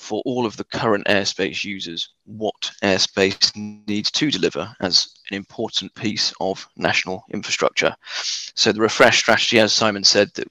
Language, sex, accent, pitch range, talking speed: English, male, British, 100-115 Hz, 155 wpm